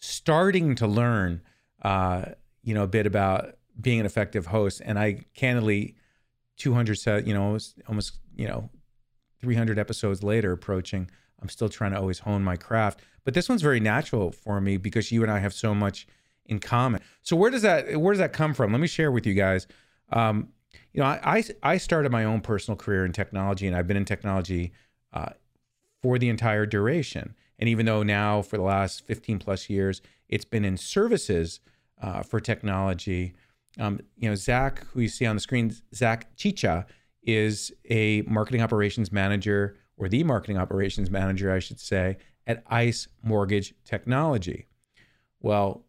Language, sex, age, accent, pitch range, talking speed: English, male, 40-59, American, 100-120 Hz, 175 wpm